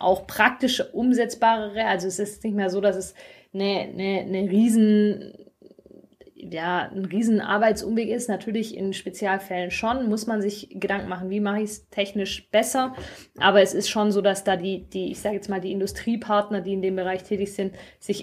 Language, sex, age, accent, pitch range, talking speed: German, female, 20-39, German, 185-210 Hz, 190 wpm